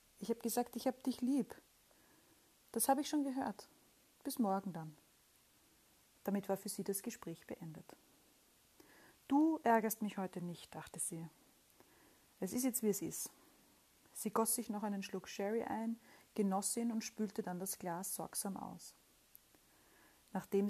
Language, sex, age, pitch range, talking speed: German, female, 40-59, 190-225 Hz, 155 wpm